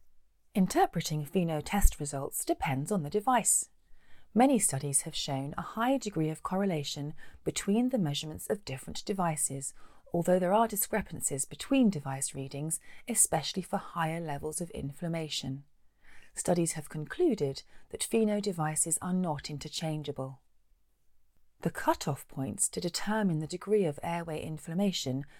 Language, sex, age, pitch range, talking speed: English, female, 40-59, 145-195 Hz, 130 wpm